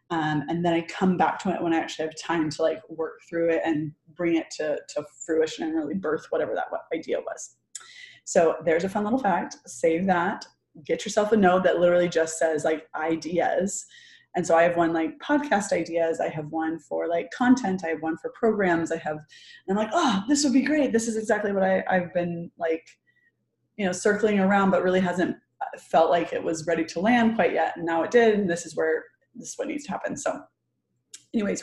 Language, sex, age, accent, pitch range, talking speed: English, female, 20-39, American, 165-205 Hz, 220 wpm